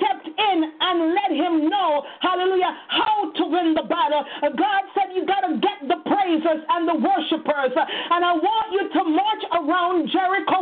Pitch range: 325-385 Hz